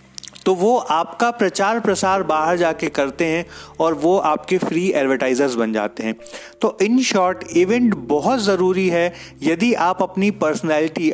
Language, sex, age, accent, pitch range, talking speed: Hindi, male, 30-49, native, 145-195 Hz, 150 wpm